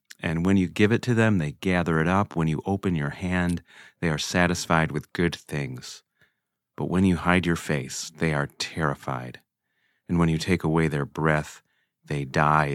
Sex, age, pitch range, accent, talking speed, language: male, 30-49, 80-95 Hz, American, 190 wpm, English